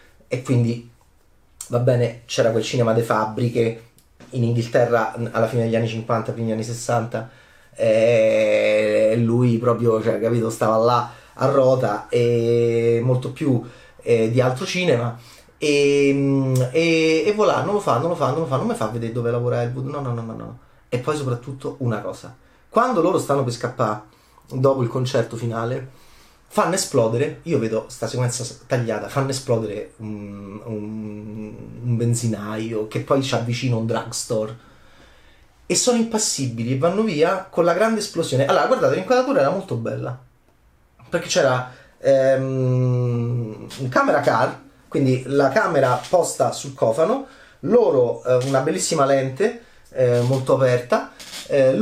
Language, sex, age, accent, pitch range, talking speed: Italian, male, 30-49, native, 115-140 Hz, 150 wpm